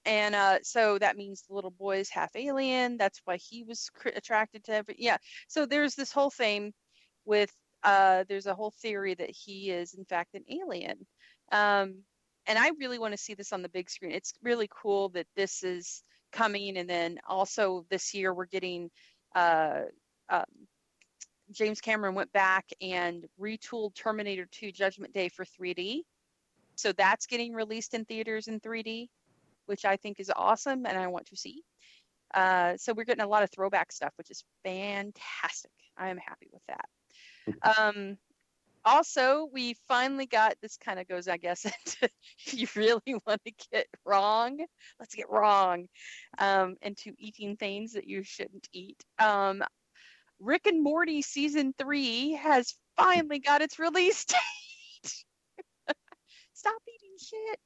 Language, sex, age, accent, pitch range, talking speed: English, female, 30-49, American, 195-255 Hz, 165 wpm